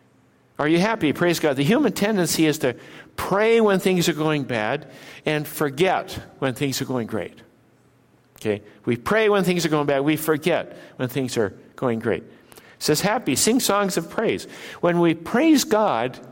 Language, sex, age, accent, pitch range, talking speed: English, male, 60-79, American, 140-175 Hz, 180 wpm